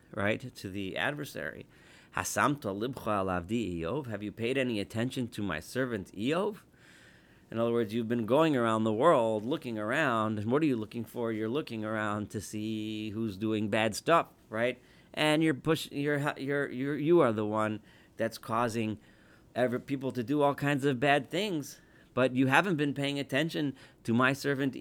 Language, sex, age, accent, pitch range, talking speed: English, male, 40-59, American, 100-135 Hz, 180 wpm